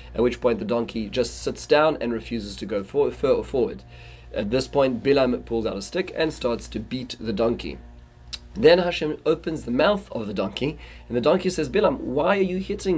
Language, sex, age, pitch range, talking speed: English, male, 30-49, 115-150 Hz, 215 wpm